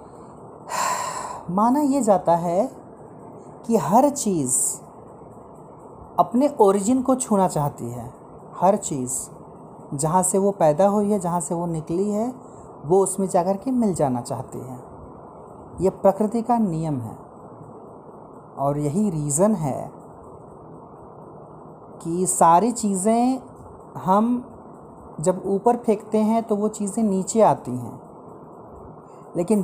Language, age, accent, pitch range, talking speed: Hindi, 30-49, native, 175-235 Hz, 115 wpm